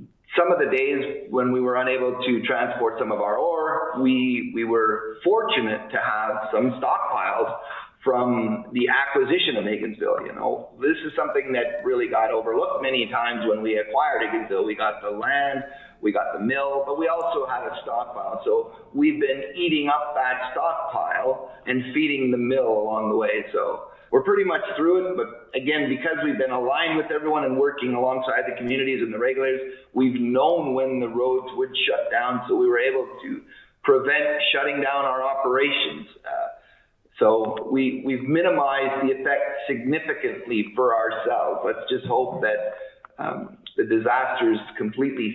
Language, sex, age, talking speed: English, male, 40-59, 170 wpm